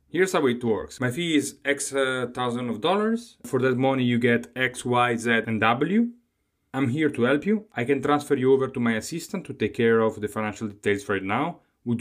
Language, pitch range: English, 110-135 Hz